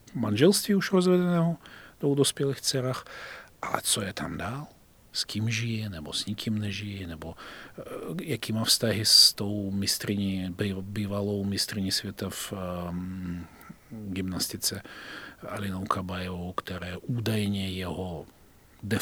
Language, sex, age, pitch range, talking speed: Czech, male, 40-59, 95-125 Hz, 115 wpm